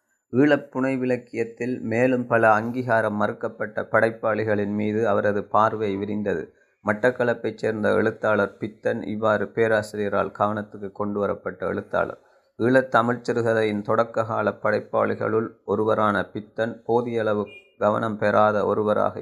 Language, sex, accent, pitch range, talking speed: Tamil, male, native, 105-120 Hz, 95 wpm